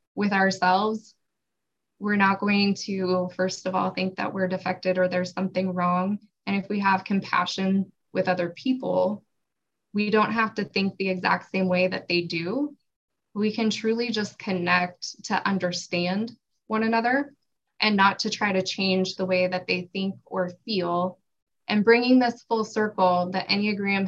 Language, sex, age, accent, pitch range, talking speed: English, female, 20-39, American, 185-230 Hz, 165 wpm